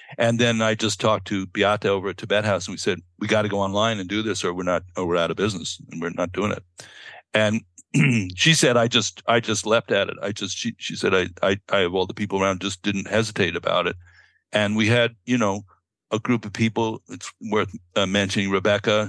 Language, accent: English, American